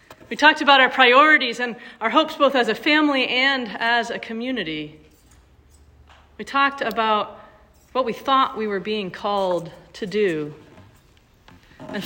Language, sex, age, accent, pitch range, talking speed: English, female, 40-59, American, 180-250 Hz, 145 wpm